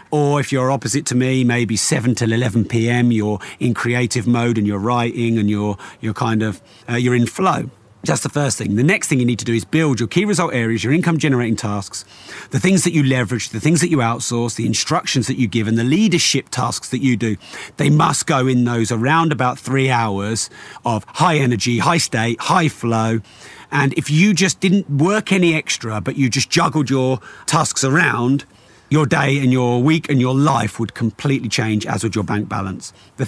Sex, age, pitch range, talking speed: male, 40-59, 115-155 Hz, 215 wpm